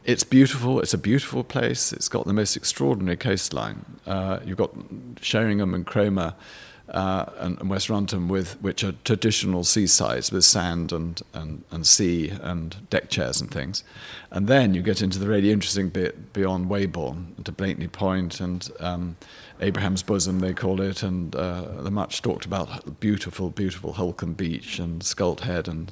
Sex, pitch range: male, 90-115 Hz